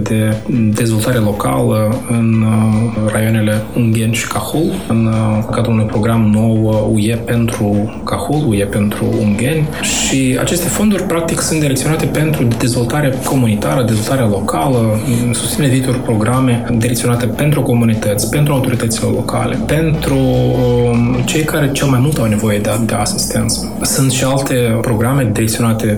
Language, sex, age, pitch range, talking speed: Romanian, male, 20-39, 105-120 Hz, 135 wpm